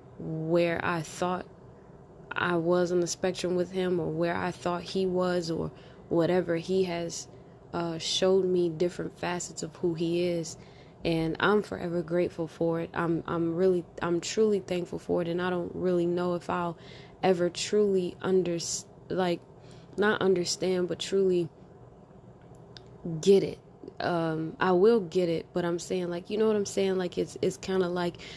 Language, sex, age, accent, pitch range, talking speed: English, female, 20-39, American, 165-185 Hz, 170 wpm